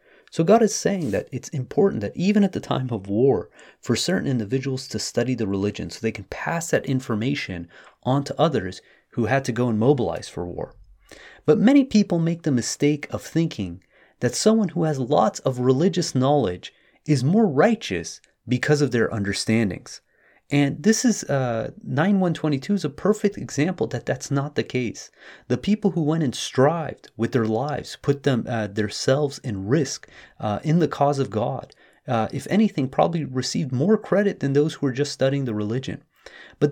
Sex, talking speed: male, 185 wpm